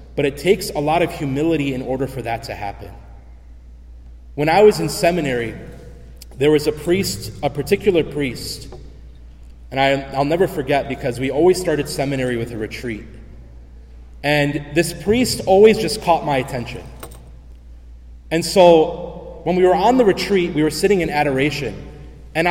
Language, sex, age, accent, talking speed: English, male, 30-49, American, 155 wpm